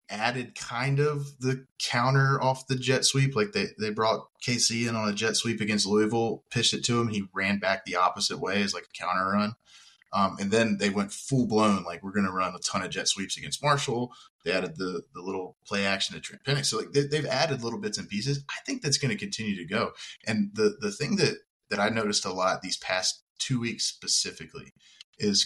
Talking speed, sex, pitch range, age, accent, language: 230 wpm, male, 100-135 Hz, 20-39, American, English